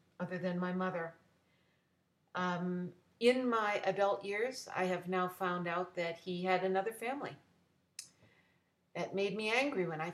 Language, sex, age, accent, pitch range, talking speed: English, female, 50-69, American, 175-205 Hz, 150 wpm